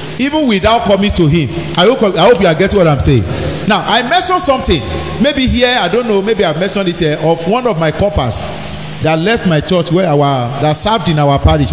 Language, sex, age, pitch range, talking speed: English, male, 40-59, 150-235 Hz, 230 wpm